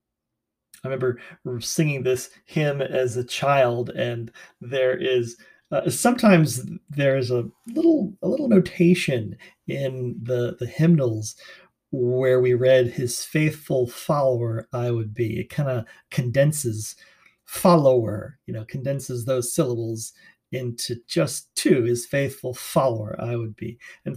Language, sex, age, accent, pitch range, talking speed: English, male, 40-59, American, 120-165 Hz, 130 wpm